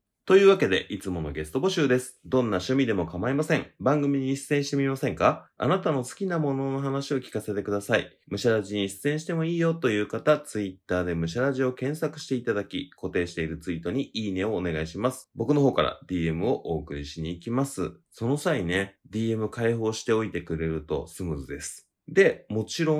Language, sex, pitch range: Japanese, male, 90-135 Hz